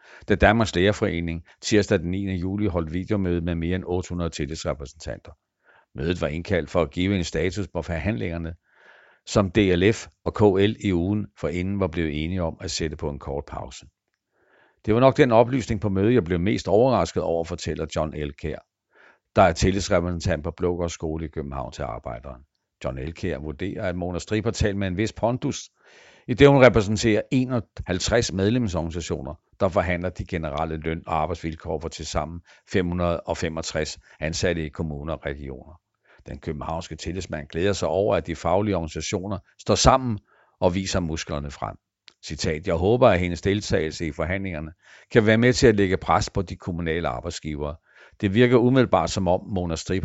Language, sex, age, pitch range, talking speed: Danish, male, 60-79, 80-100 Hz, 170 wpm